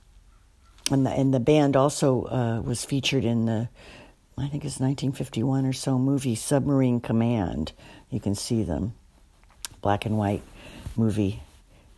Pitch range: 105-140 Hz